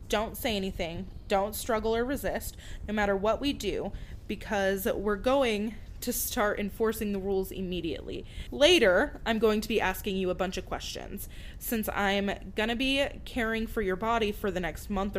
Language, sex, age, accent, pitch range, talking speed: English, female, 20-39, American, 185-235 Hz, 175 wpm